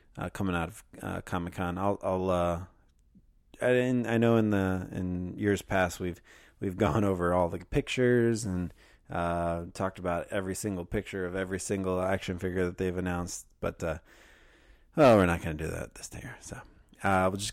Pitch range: 85-95 Hz